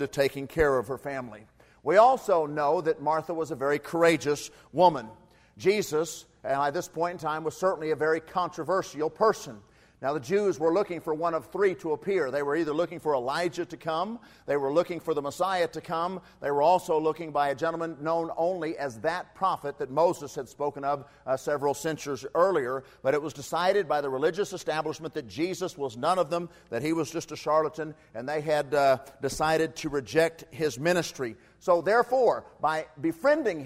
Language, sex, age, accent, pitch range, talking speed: English, male, 50-69, American, 145-180 Hz, 195 wpm